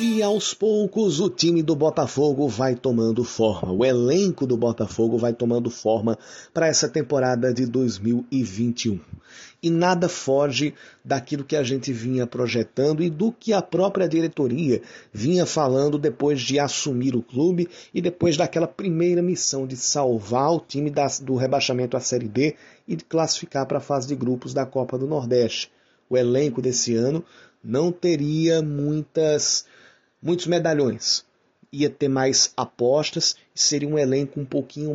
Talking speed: 155 wpm